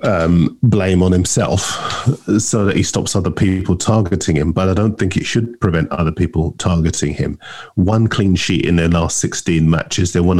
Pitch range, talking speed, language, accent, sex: 85-105 Hz, 190 wpm, English, British, male